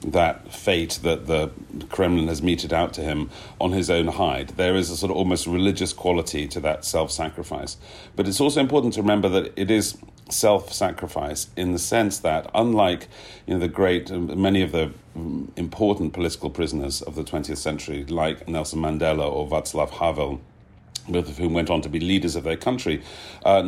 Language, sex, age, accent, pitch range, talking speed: English, male, 40-59, British, 80-95 Hz, 180 wpm